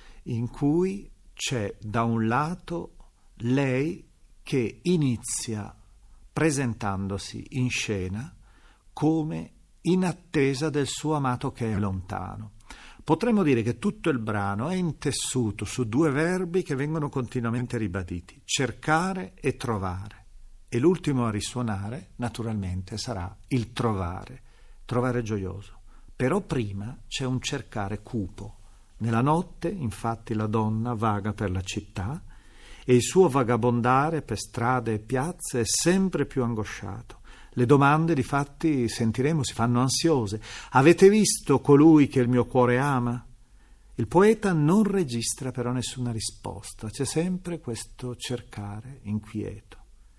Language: Italian